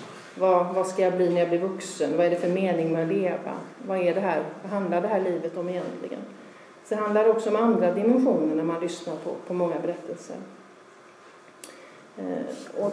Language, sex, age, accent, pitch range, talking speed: Swedish, female, 40-59, native, 175-230 Hz, 180 wpm